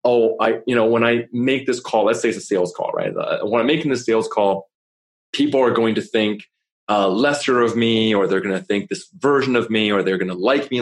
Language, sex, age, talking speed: English, male, 30-49, 255 wpm